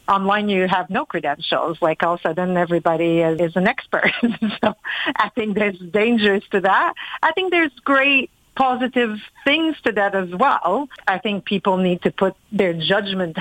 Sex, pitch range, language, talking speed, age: female, 175-210 Hz, English, 175 wpm, 50-69